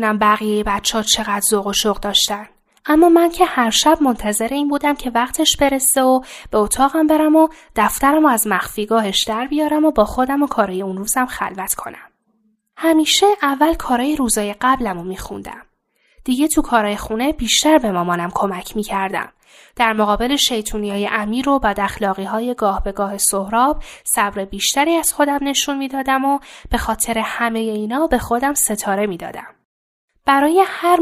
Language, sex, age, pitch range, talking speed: Persian, female, 10-29, 210-295 Hz, 155 wpm